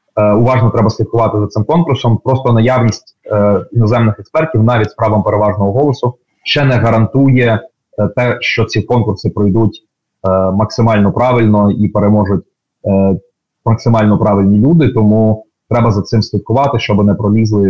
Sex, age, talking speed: male, 30-49, 130 wpm